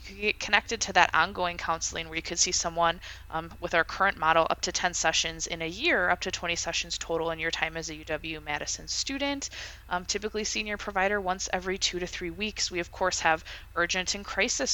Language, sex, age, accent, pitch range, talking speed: English, female, 20-39, American, 165-210 Hz, 210 wpm